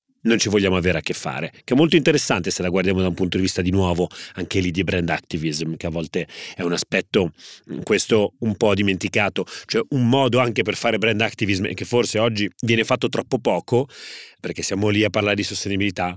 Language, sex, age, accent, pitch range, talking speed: Italian, male, 30-49, native, 95-125 Hz, 220 wpm